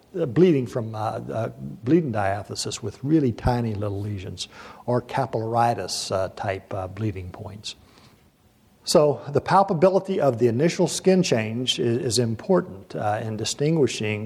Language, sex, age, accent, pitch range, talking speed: English, male, 60-79, American, 110-135 Hz, 130 wpm